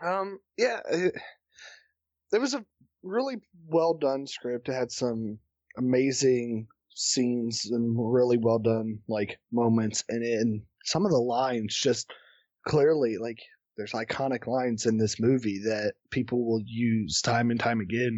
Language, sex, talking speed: English, male, 145 wpm